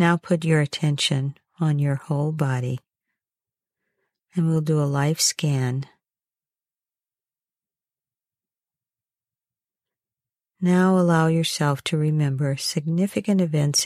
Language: English